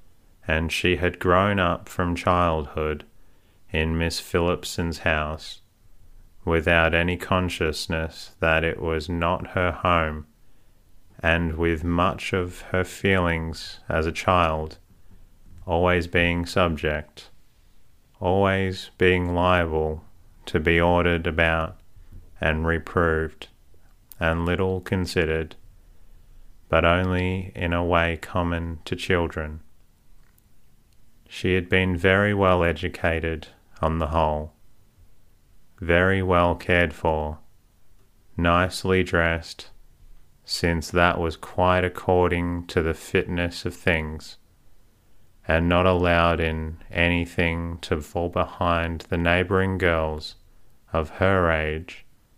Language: English